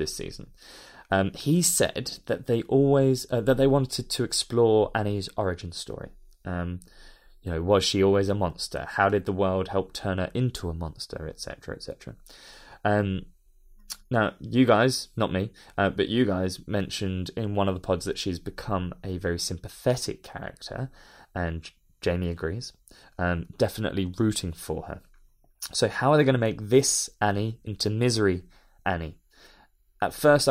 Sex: male